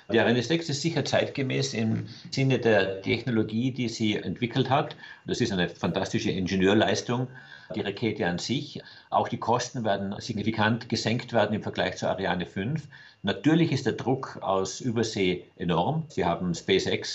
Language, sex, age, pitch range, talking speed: German, male, 50-69, 100-120 Hz, 160 wpm